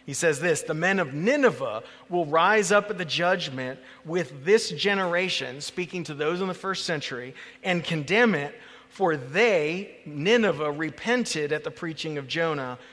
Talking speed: 165 wpm